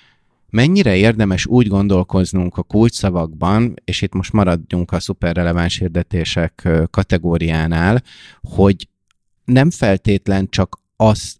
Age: 30-49